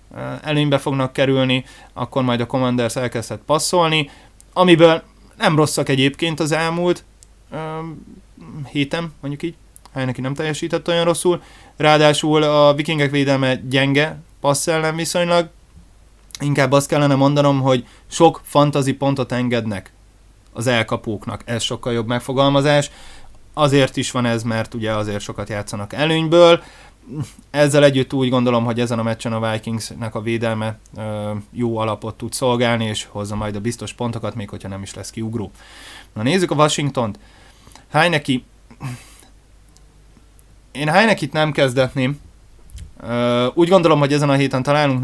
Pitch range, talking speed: 115-145 Hz, 135 wpm